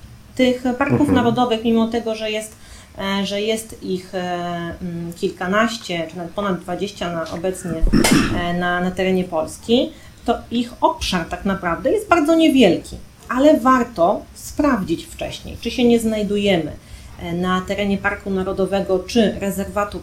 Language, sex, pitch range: Polish, female, 175-220 Hz